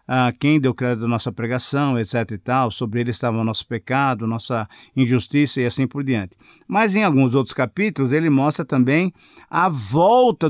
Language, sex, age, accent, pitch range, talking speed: Portuguese, male, 50-69, Brazilian, 125-155 Hz, 175 wpm